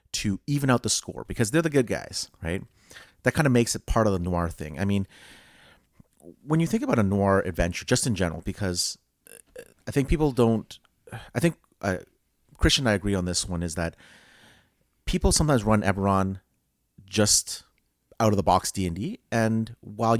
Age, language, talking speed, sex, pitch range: 30-49, English, 175 wpm, male, 90-115 Hz